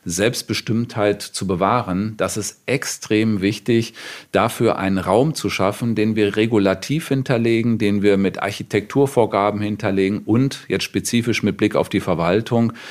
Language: German